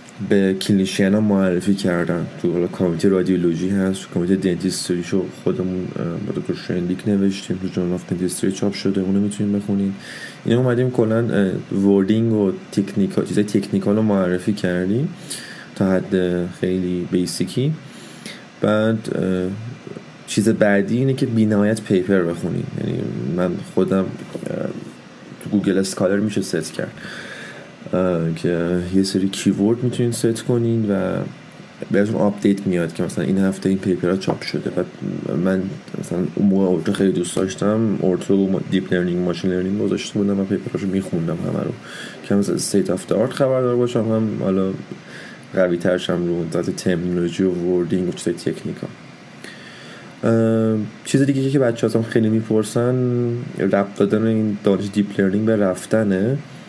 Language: Persian